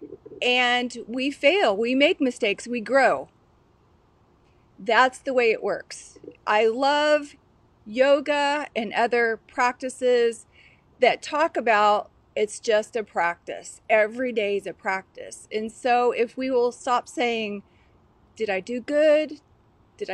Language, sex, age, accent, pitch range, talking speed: English, female, 40-59, American, 225-290 Hz, 130 wpm